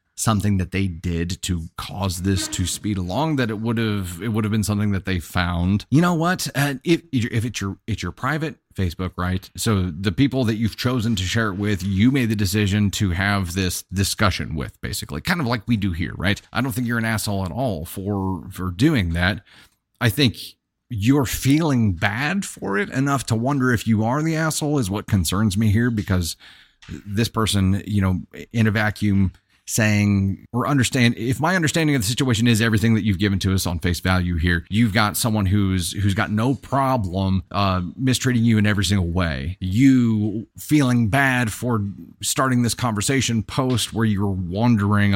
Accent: American